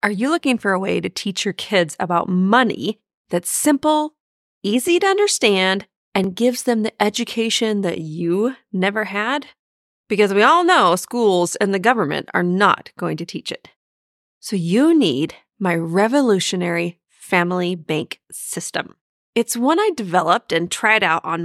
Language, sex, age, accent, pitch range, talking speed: English, female, 30-49, American, 185-265 Hz, 155 wpm